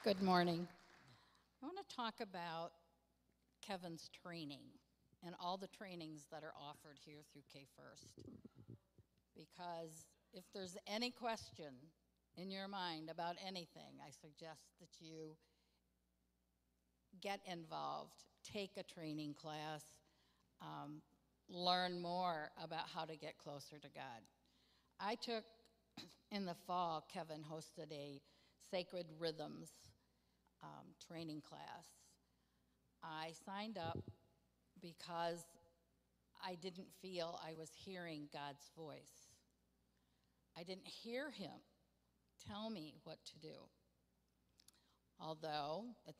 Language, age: English, 50-69